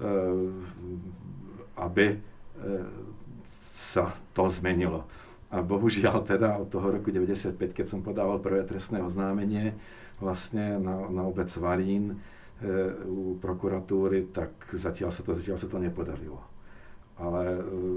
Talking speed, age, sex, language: 105 wpm, 50-69, male, Slovak